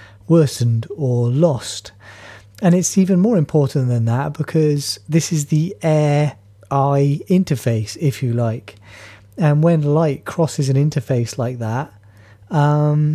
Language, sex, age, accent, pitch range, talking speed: English, male, 30-49, British, 115-155 Hz, 130 wpm